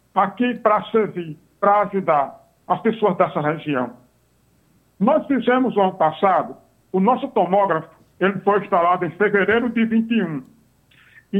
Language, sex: Portuguese, male